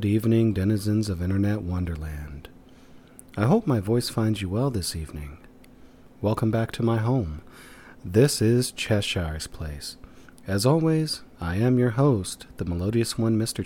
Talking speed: 150 wpm